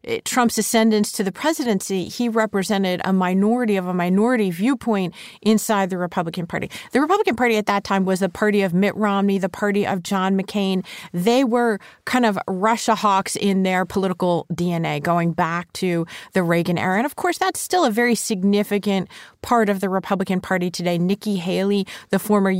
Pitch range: 180-215 Hz